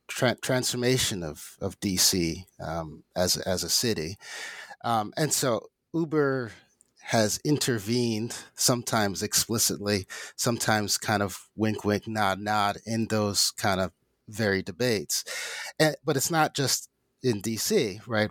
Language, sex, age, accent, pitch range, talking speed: English, male, 30-49, American, 100-130 Hz, 120 wpm